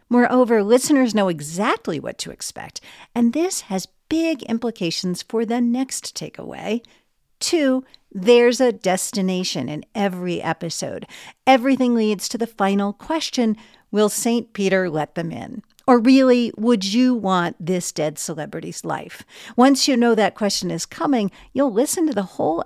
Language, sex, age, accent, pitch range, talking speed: English, female, 50-69, American, 185-245 Hz, 150 wpm